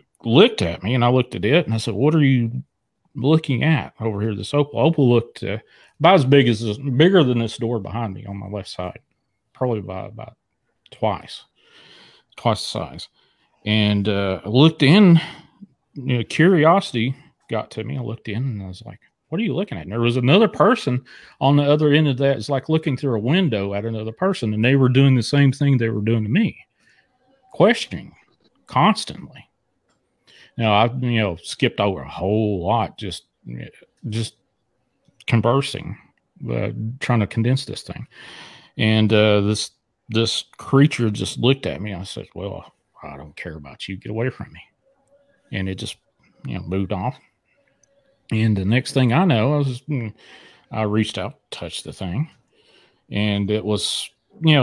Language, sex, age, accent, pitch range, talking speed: English, male, 40-59, American, 105-145 Hz, 180 wpm